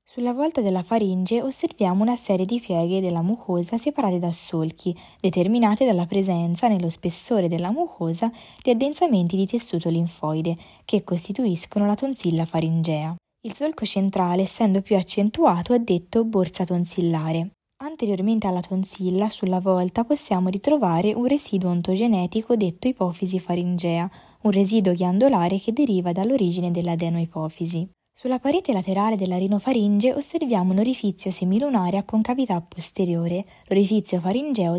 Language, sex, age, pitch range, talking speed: Italian, female, 10-29, 175-220 Hz, 130 wpm